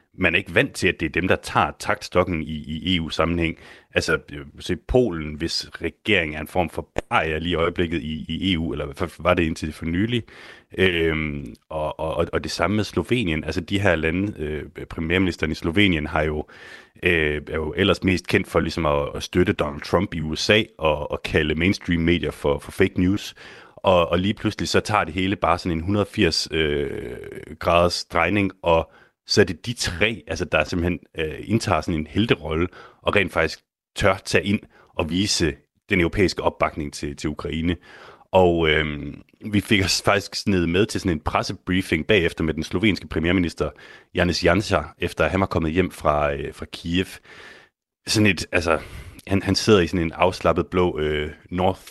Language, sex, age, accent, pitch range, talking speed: Danish, male, 30-49, native, 80-95 Hz, 190 wpm